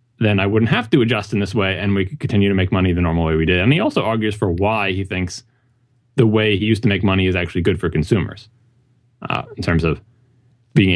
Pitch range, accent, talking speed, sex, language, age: 90-120 Hz, American, 250 wpm, male, English, 20-39